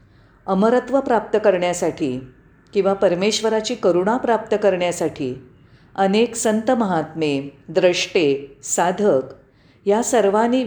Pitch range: 145-225 Hz